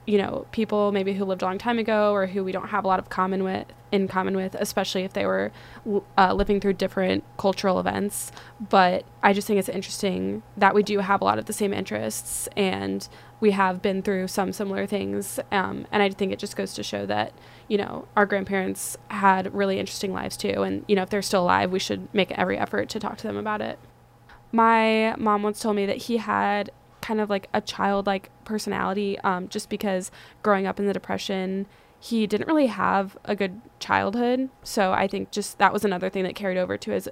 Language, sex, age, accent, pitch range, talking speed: English, female, 20-39, American, 180-205 Hz, 220 wpm